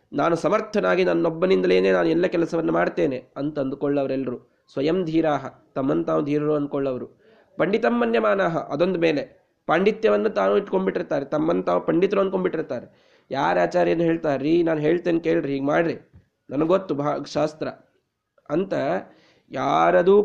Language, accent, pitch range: Kannada, native, 140-185 Hz